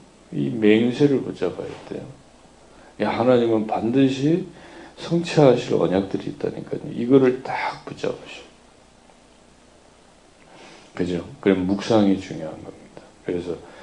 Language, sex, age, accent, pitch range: Korean, male, 40-59, native, 90-110 Hz